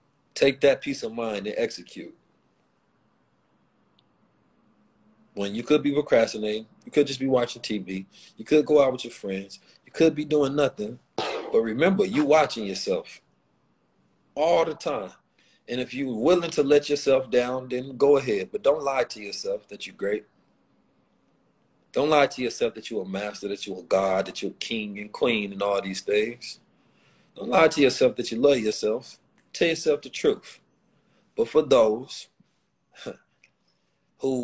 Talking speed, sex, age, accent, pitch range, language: 165 wpm, male, 40-59, American, 110-150 Hz, English